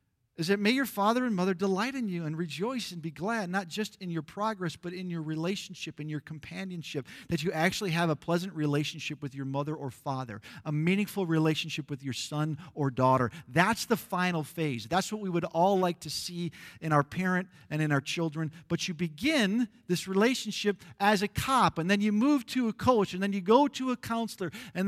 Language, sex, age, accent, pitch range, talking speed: English, male, 50-69, American, 160-235 Hz, 215 wpm